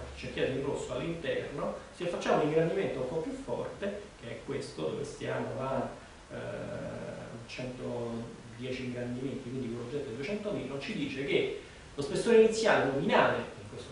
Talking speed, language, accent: 160 wpm, Italian, native